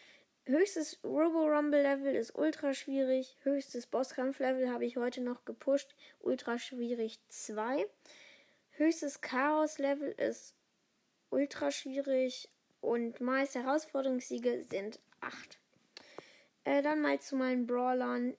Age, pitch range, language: 10-29, 250-310 Hz, German